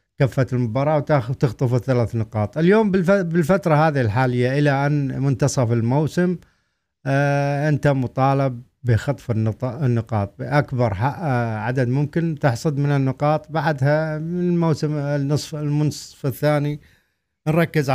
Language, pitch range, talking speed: Arabic, 110-145 Hz, 100 wpm